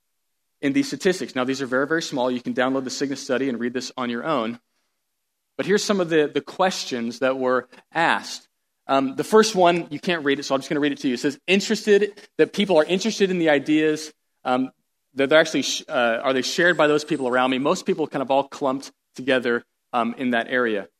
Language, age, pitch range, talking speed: English, 40-59, 125-165 Hz, 240 wpm